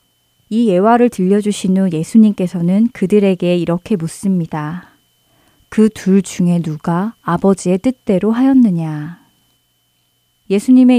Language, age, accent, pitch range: Korean, 20-39, native, 170-230 Hz